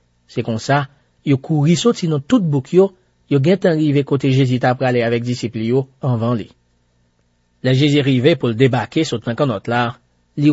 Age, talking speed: 40-59, 205 wpm